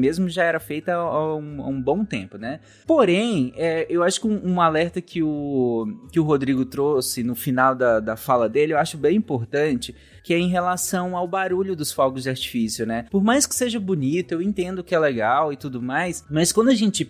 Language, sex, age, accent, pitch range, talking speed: Portuguese, male, 20-39, Brazilian, 145-220 Hz, 210 wpm